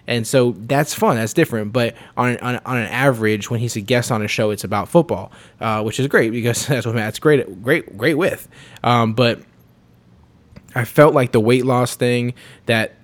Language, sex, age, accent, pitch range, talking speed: English, male, 20-39, American, 110-135 Hz, 205 wpm